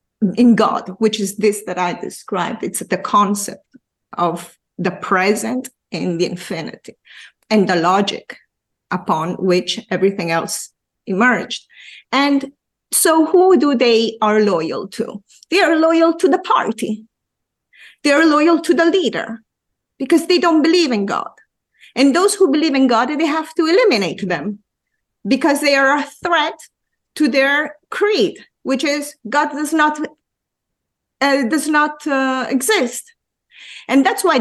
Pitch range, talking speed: 215-315 Hz, 145 wpm